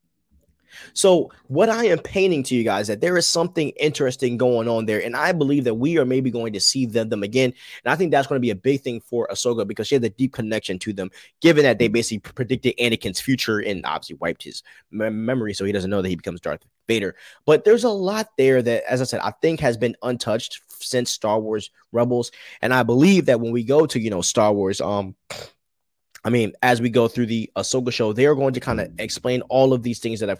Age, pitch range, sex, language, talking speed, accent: 20-39, 110-135 Hz, male, English, 245 wpm, American